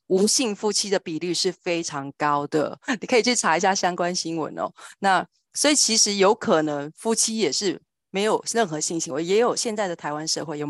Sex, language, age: female, Chinese, 30-49